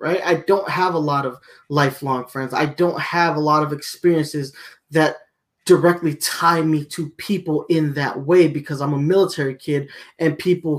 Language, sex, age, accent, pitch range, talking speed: English, male, 20-39, American, 145-165 Hz, 180 wpm